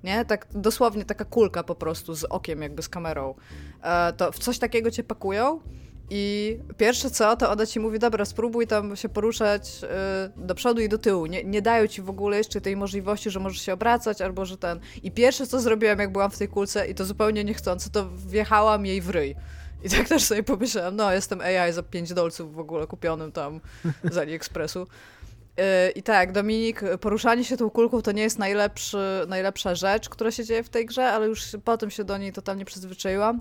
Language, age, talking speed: Polish, 20-39, 205 wpm